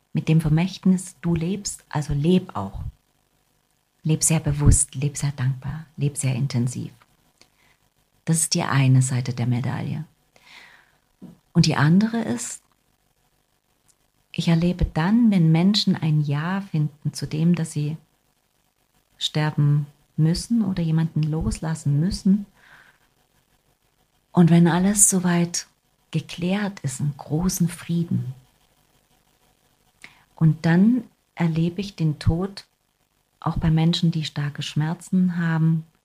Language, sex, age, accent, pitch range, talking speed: German, female, 40-59, German, 145-175 Hz, 115 wpm